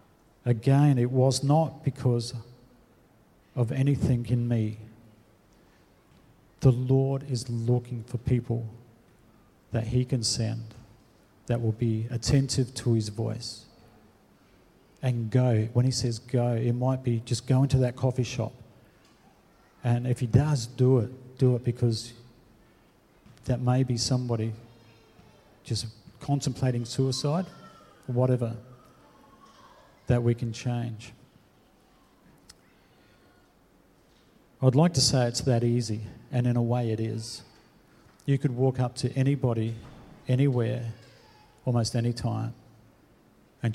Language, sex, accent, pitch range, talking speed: English, male, Australian, 115-130 Hz, 120 wpm